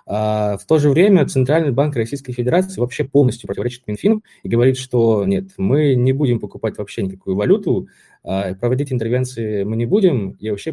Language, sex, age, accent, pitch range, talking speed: Russian, male, 20-39, native, 100-125 Hz, 170 wpm